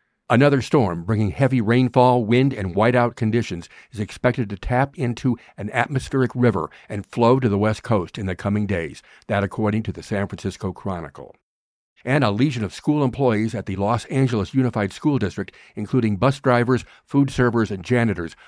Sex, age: male, 50-69